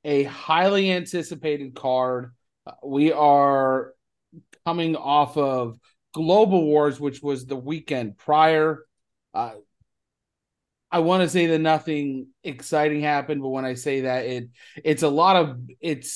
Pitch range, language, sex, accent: 125-155 Hz, English, male, American